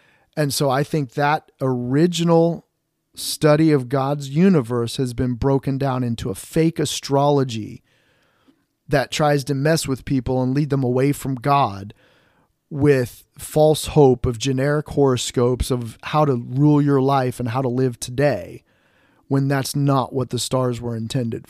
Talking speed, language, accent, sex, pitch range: 155 wpm, English, American, male, 125-150 Hz